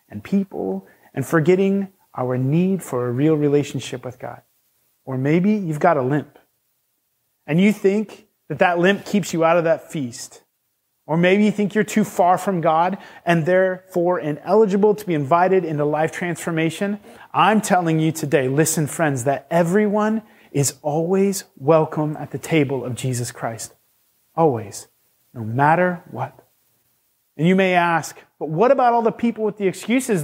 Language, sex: English, male